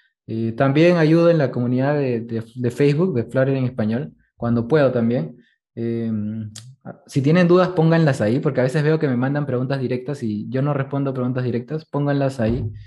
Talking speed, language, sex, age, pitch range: 185 wpm, Spanish, male, 20-39, 120-145 Hz